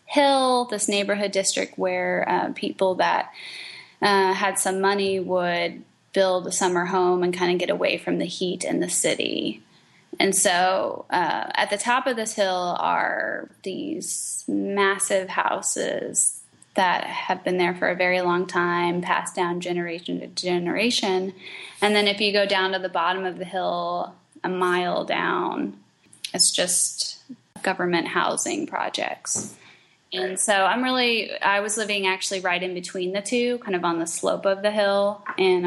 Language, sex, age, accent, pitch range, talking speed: English, female, 10-29, American, 180-200 Hz, 165 wpm